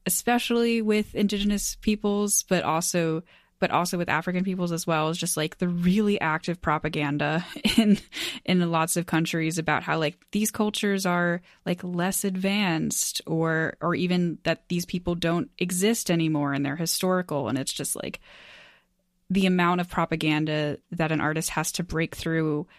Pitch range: 165-190 Hz